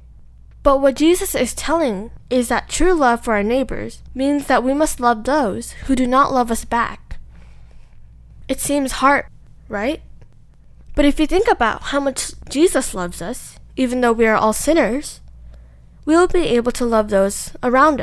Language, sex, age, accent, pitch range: Korean, female, 10-29, American, 210-285 Hz